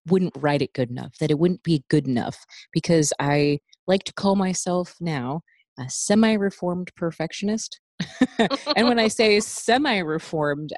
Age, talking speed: 20-39, 145 wpm